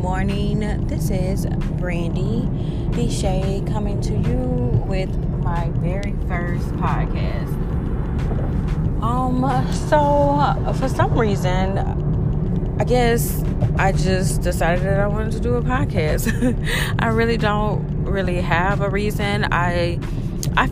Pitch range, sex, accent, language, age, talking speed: 155-195 Hz, female, American, English, 20-39, 115 wpm